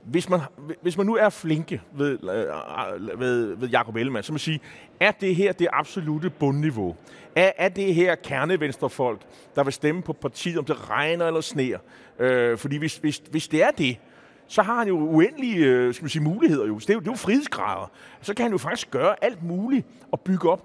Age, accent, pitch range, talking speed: 30-49, native, 150-200 Hz, 205 wpm